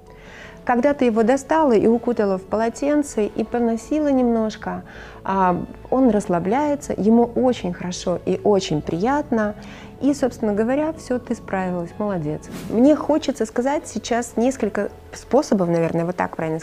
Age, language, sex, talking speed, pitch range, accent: 30-49, Ukrainian, female, 130 wpm, 190-255 Hz, native